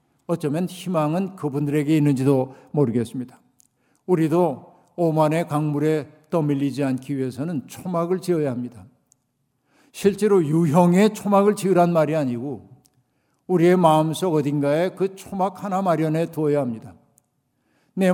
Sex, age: male, 60-79